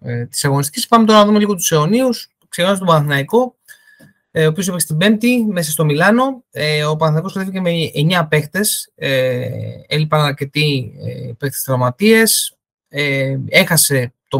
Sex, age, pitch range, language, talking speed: male, 20-39, 135-190 Hz, Greek, 135 wpm